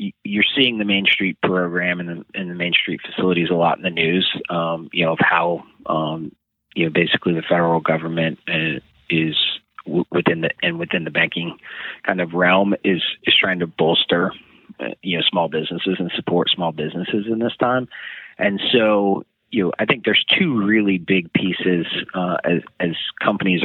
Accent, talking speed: American, 180 wpm